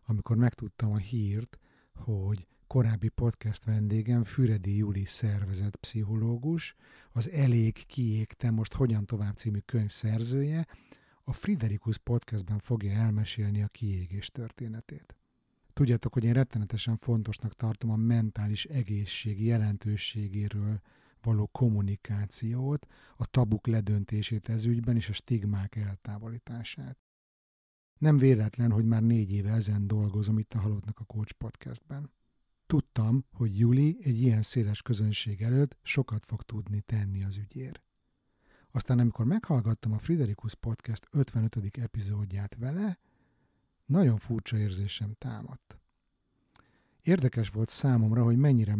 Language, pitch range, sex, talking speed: Hungarian, 105-120 Hz, male, 115 wpm